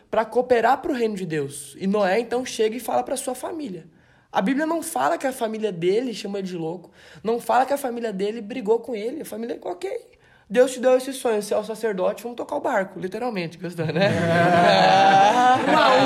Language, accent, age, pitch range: Gujarati, Brazilian, 20-39, 170-230 Hz